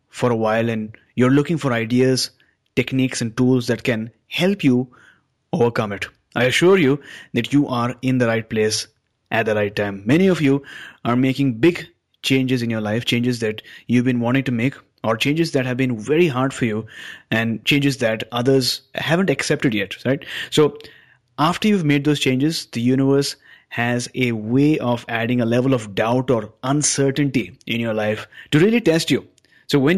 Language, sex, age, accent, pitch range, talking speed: English, male, 30-49, Indian, 115-145 Hz, 185 wpm